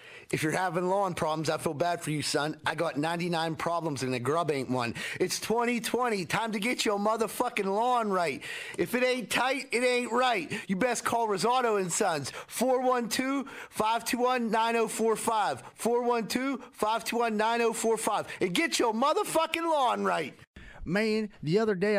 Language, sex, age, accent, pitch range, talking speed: English, male, 30-49, American, 185-260 Hz, 145 wpm